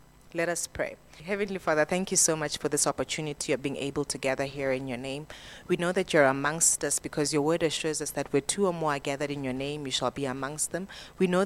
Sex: female